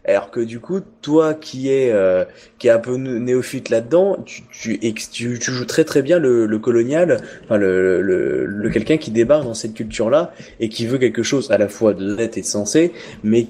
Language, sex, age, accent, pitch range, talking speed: French, male, 20-39, French, 115-145 Hz, 225 wpm